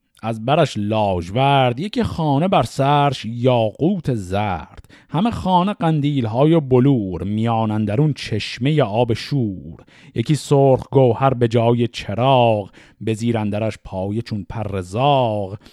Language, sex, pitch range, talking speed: Persian, male, 115-160 Hz, 120 wpm